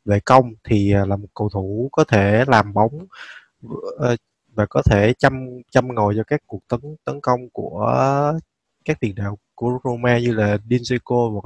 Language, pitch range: Vietnamese, 105-130 Hz